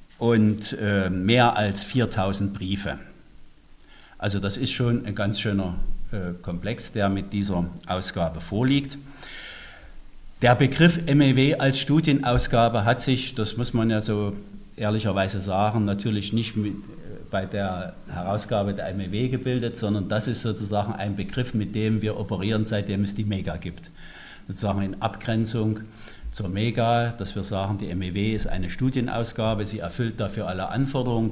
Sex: male